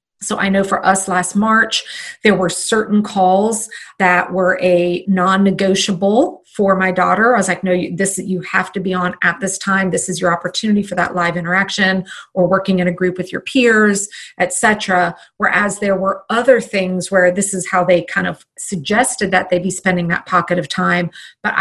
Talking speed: 195 wpm